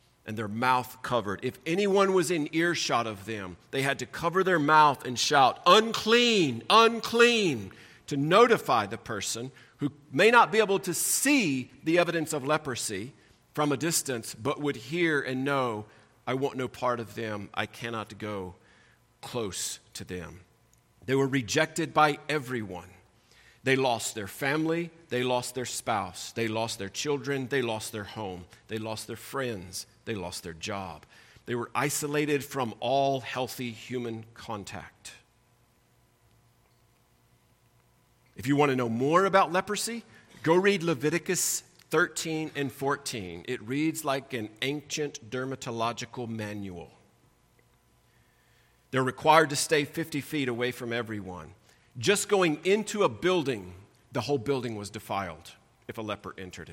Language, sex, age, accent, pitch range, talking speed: English, male, 40-59, American, 110-155 Hz, 145 wpm